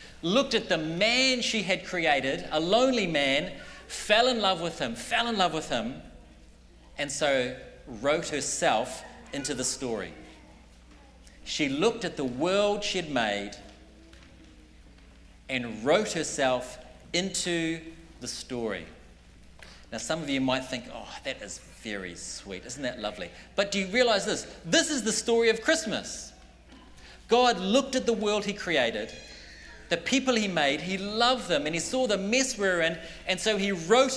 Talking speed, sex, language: 160 wpm, male, English